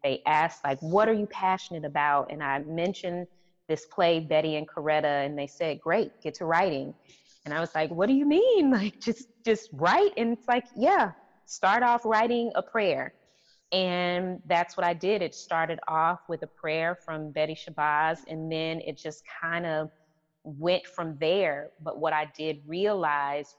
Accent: American